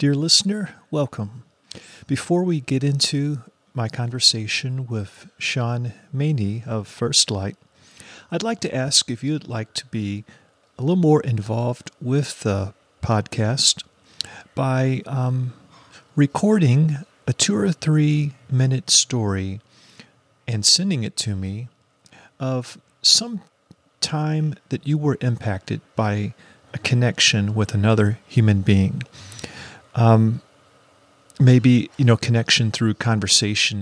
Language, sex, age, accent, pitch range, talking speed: English, male, 40-59, American, 110-140 Hz, 115 wpm